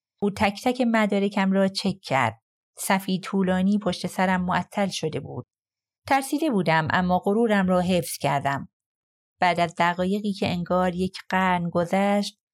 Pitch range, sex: 170-205 Hz, female